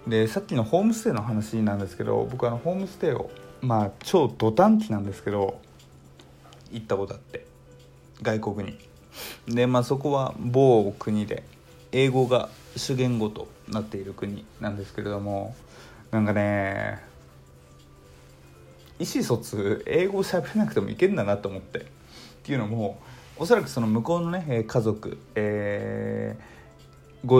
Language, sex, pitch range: Japanese, male, 100-125 Hz